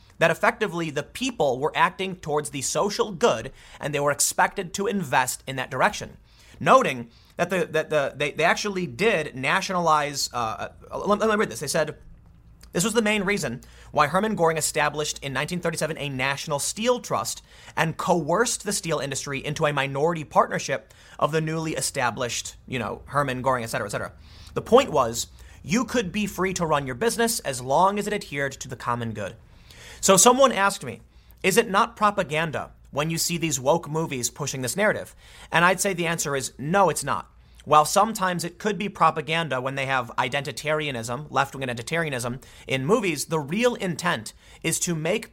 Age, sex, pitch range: 30-49, male, 135-195 Hz